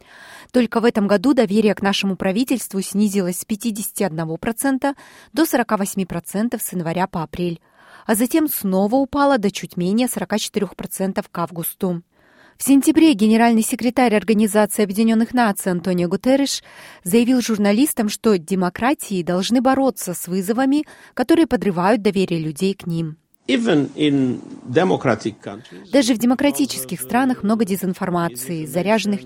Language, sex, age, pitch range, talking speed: Russian, female, 20-39, 180-240 Hz, 115 wpm